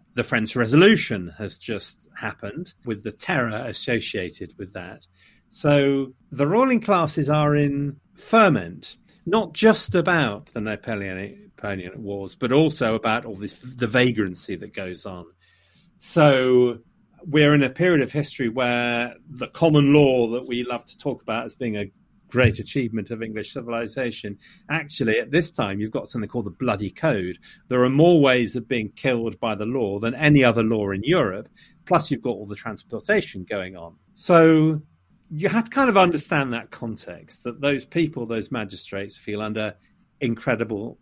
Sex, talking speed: male, 165 wpm